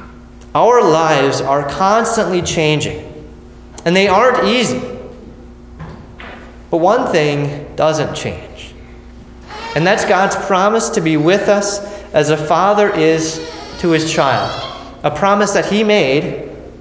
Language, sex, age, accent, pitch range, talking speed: English, male, 30-49, American, 150-190 Hz, 120 wpm